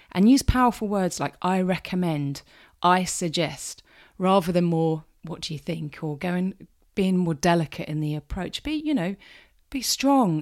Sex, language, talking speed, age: female, English, 165 wpm, 30-49